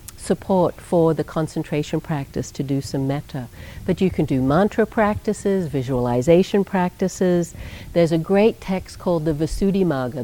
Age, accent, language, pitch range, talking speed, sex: 60-79, American, English, 145-180 Hz, 140 wpm, female